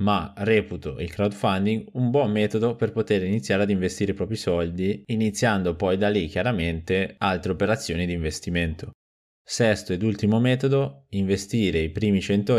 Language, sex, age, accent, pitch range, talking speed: Italian, male, 20-39, native, 90-110 Hz, 155 wpm